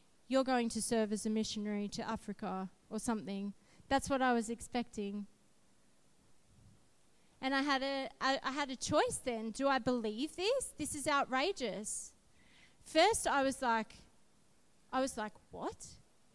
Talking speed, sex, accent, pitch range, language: 150 wpm, female, Australian, 220-275 Hz, English